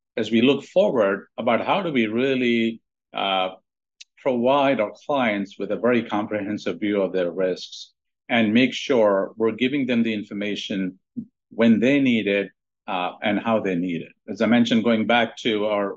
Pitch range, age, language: 100-125 Hz, 50-69, English